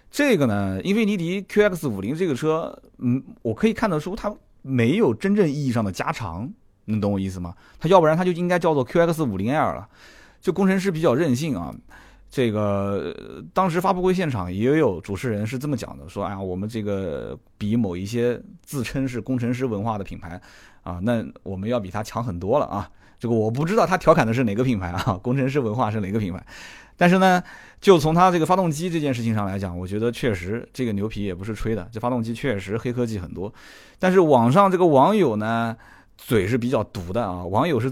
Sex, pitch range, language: male, 105-160 Hz, Chinese